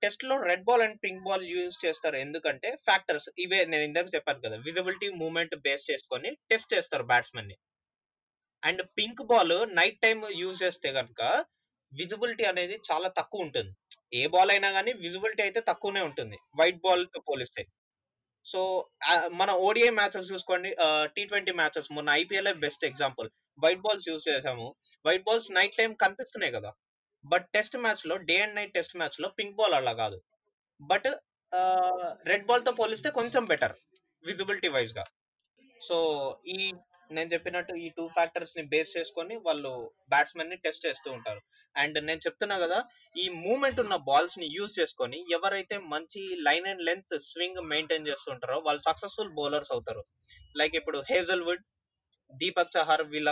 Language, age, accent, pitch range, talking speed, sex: Telugu, 20-39, native, 165-220 Hz, 155 wpm, male